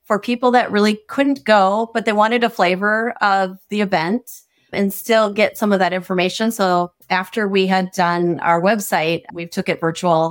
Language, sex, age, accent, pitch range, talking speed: English, female, 30-49, American, 175-210 Hz, 185 wpm